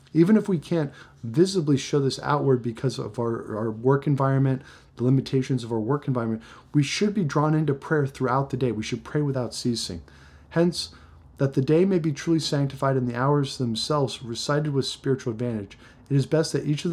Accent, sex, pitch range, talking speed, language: American, male, 125-150 Hz, 200 wpm, English